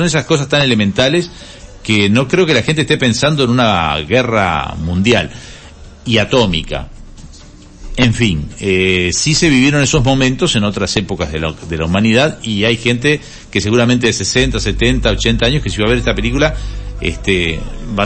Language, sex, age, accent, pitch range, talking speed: Spanish, male, 50-69, Argentinian, 100-135 Hz, 180 wpm